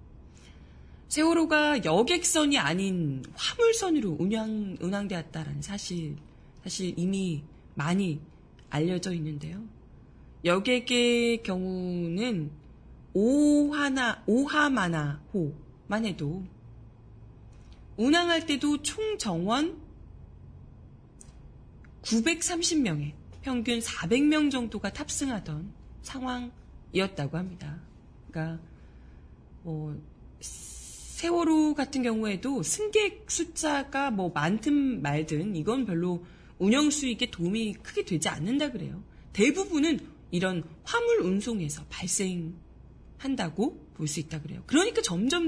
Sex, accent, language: female, native, Korean